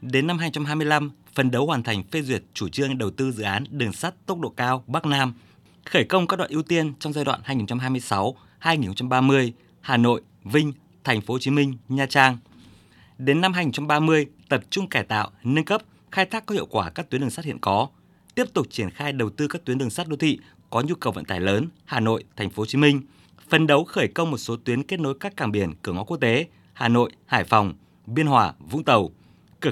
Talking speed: 225 wpm